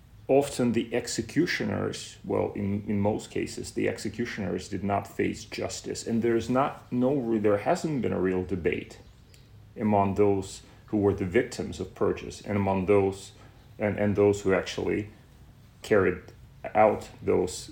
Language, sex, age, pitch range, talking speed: English, male, 30-49, 100-120 Hz, 145 wpm